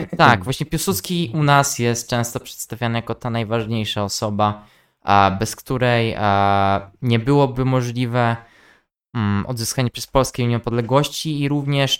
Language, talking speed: Polish, 115 wpm